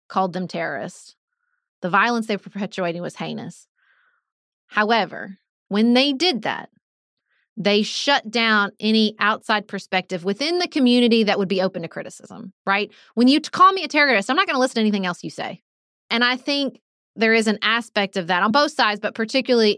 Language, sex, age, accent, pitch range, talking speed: English, female, 30-49, American, 200-270 Hz, 185 wpm